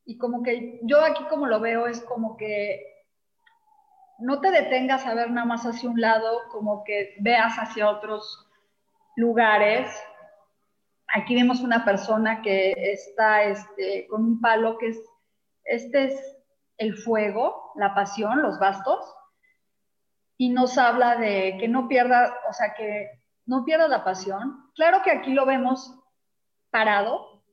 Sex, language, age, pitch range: female, Spanish, 30-49, 205-255 Hz